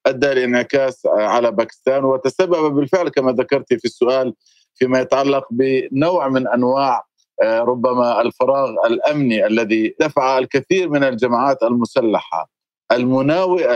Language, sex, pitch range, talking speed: Arabic, male, 125-160 Hz, 110 wpm